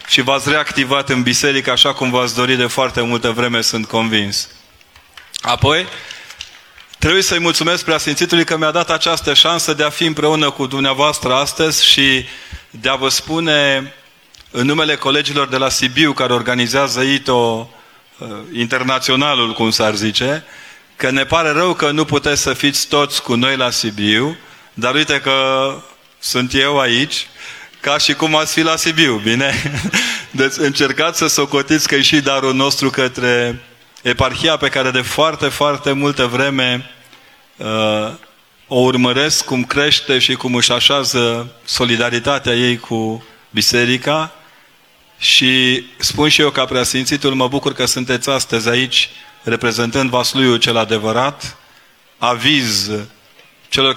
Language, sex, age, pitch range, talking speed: Romanian, male, 30-49, 120-145 Hz, 140 wpm